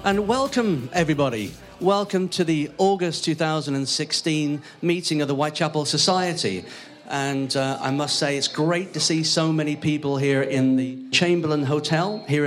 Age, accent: 40-59, British